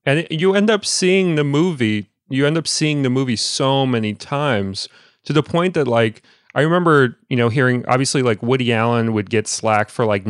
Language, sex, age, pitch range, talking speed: English, male, 30-49, 105-130 Hz, 205 wpm